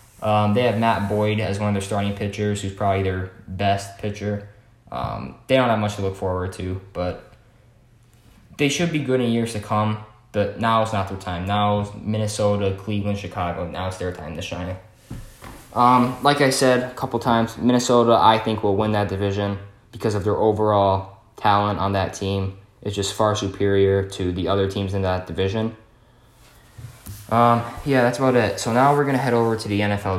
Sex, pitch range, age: male, 100-120 Hz, 10-29